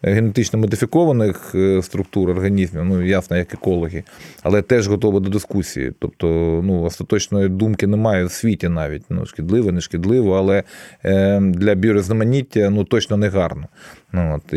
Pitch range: 95-110 Hz